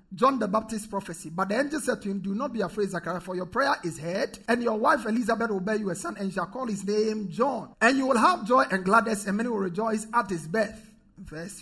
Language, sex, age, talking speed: English, male, 50-69, 265 wpm